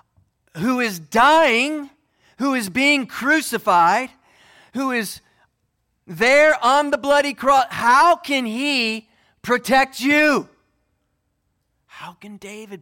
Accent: American